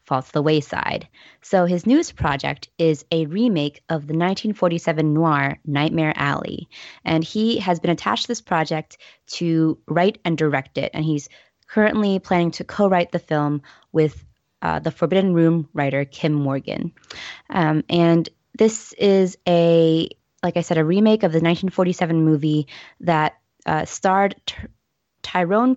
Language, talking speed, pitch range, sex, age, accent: English, 145 wpm, 150-180 Hz, female, 20-39, American